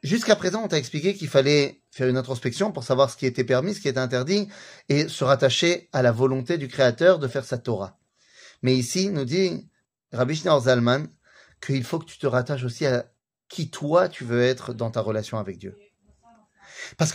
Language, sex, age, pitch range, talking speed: French, male, 30-49, 130-185 Hz, 200 wpm